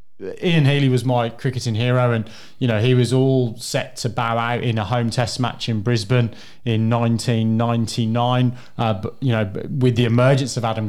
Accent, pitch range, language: British, 115-130 Hz, English